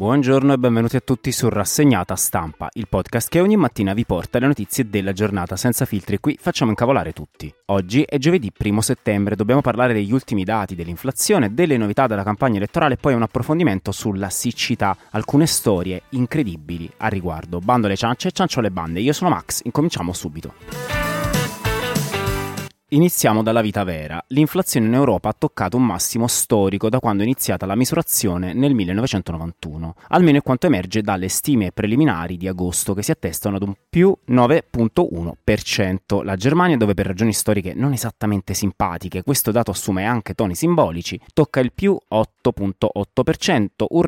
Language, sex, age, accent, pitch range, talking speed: Italian, male, 30-49, native, 95-130 Hz, 160 wpm